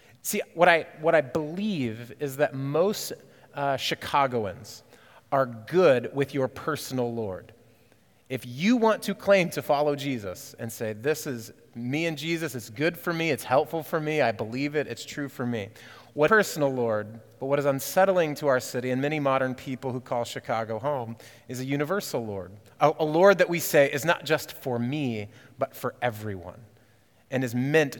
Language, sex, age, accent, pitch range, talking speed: English, male, 30-49, American, 120-150 Hz, 185 wpm